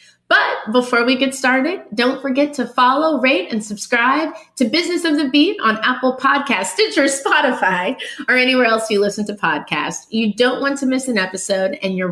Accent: American